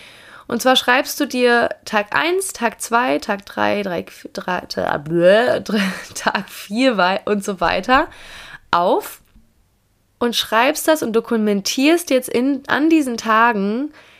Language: German